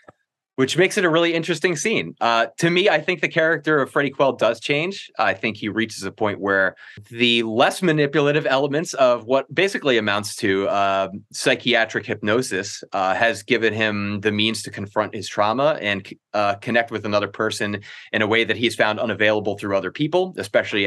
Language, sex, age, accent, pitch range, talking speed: English, male, 30-49, American, 105-140 Hz, 185 wpm